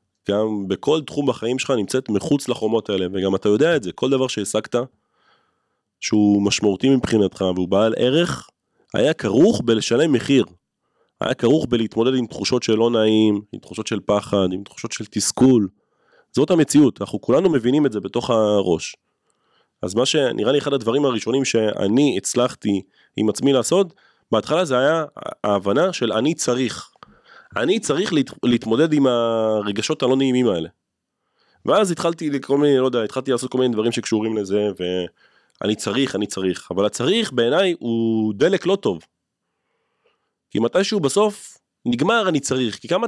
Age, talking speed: 30-49, 155 wpm